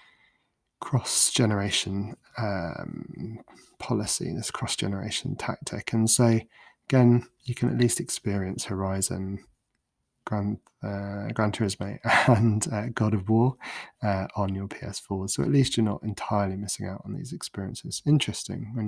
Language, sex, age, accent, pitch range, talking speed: English, male, 20-39, British, 100-120 Hz, 130 wpm